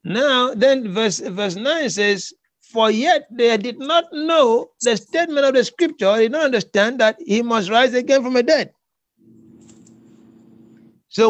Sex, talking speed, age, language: male, 160 wpm, 60-79, English